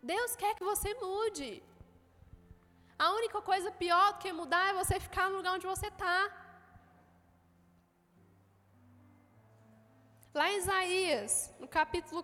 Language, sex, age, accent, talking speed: Gujarati, female, 10-29, Brazilian, 125 wpm